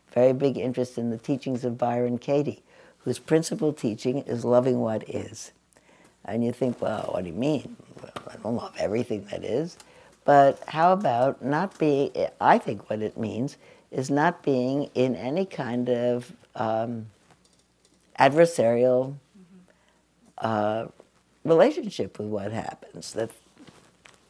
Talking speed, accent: 135 wpm, American